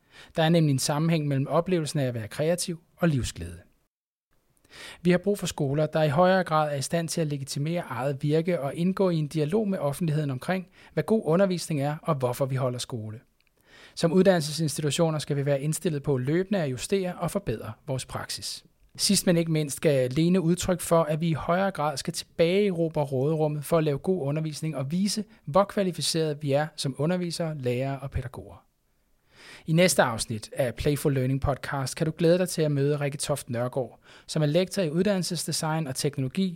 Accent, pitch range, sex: native, 135-175 Hz, male